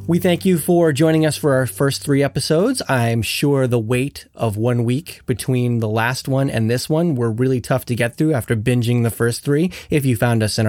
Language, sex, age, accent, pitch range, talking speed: English, male, 30-49, American, 115-155 Hz, 230 wpm